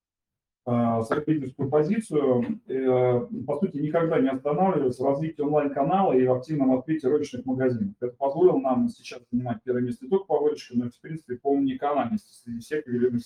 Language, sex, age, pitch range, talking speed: Russian, male, 30-49, 125-155 Hz, 170 wpm